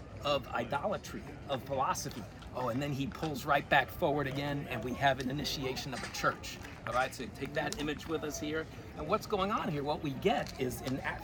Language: English